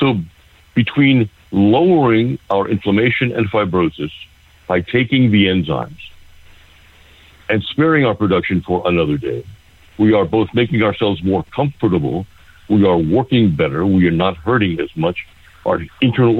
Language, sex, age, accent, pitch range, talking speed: English, male, 60-79, American, 85-110 Hz, 135 wpm